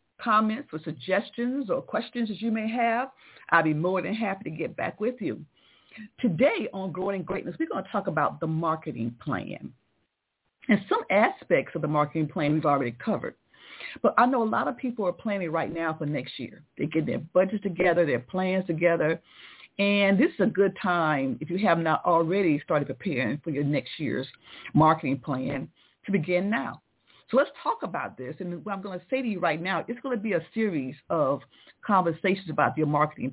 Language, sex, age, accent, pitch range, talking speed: English, female, 40-59, American, 165-215 Hz, 200 wpm